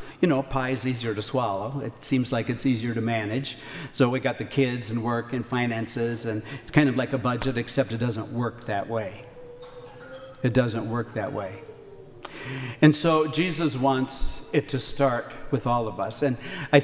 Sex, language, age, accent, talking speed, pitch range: male, English, 60-79, American, 190 wpm, 120-145 Hz